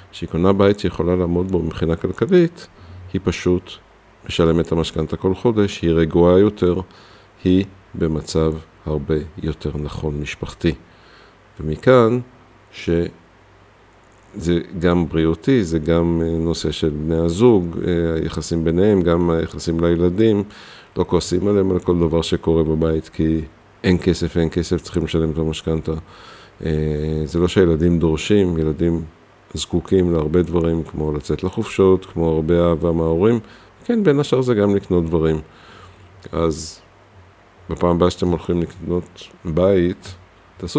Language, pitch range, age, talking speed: Hebrew, 80-100 Hz, 50-69, 125 wpm